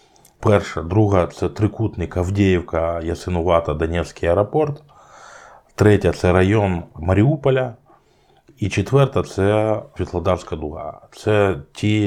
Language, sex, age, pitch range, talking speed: Ukrainian, male, 20-39, 80-95 Hz, 110 wpm